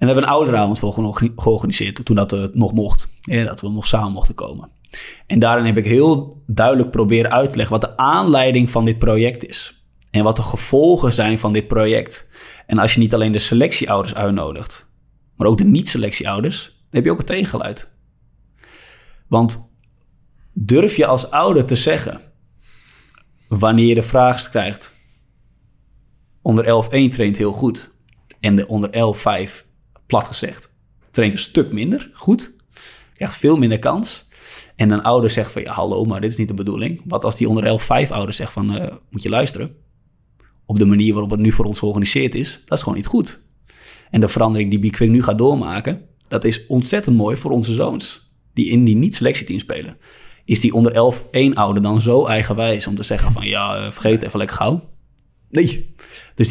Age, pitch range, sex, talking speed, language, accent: 20-39, 105-120 Hz, male, 185 wpm, Dutch, Dutch